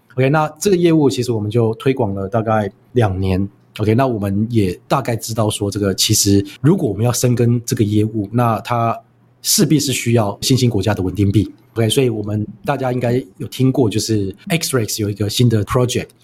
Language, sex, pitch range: Chinese, male, 105-135 Hz